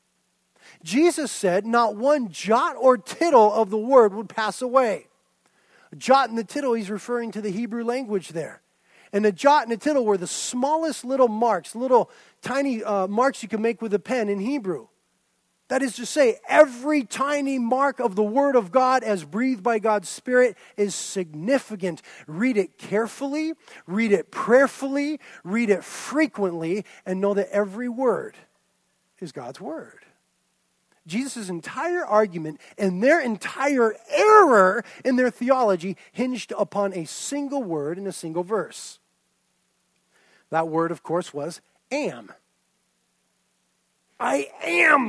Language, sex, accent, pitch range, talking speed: English, male, American, 195-270 Hz, 150 wpm